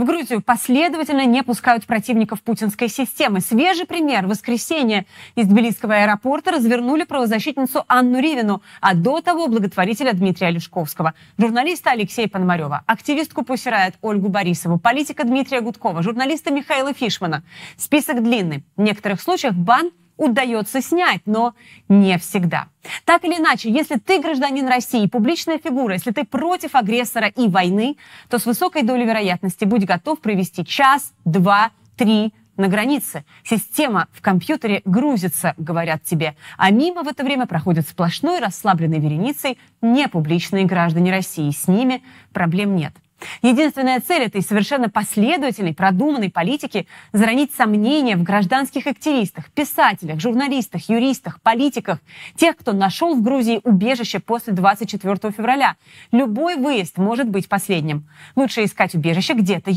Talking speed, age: 135 wpm, 30-49